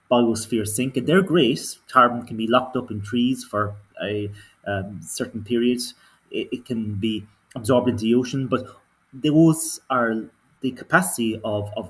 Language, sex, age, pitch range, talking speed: English, male, 30-49, 105-130 Hz, 160 wpm